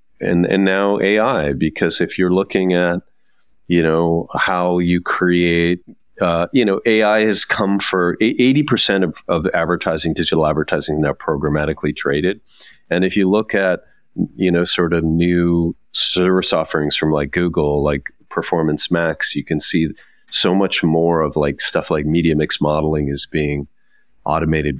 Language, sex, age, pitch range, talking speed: English, male, 40-59, 75-90 Hz, 155 wpm